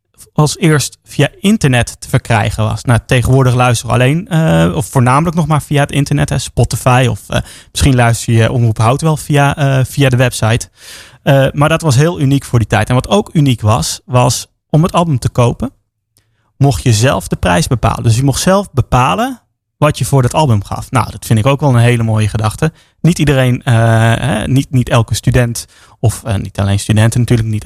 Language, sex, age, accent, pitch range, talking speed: Dutch, male, 30-49, Dutch, 115-140 Hz, 200 wpm